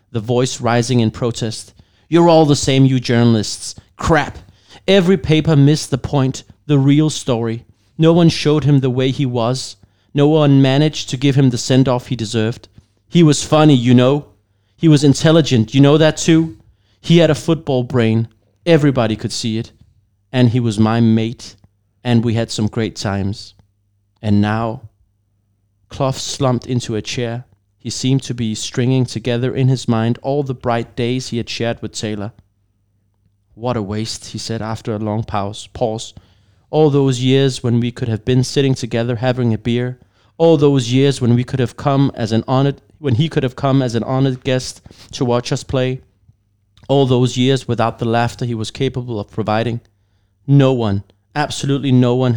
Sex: male